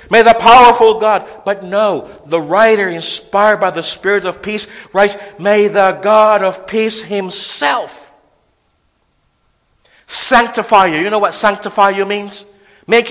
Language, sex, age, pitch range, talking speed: English, male, 50-69, 165-225 Hz, 135 wpm